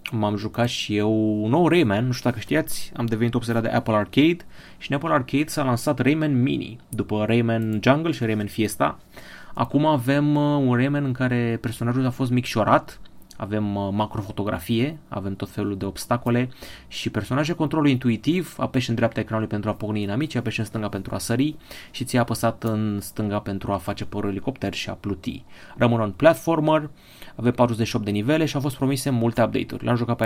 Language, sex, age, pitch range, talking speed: Romanian, male, 30-49, 105-130 Hz, 190 wpm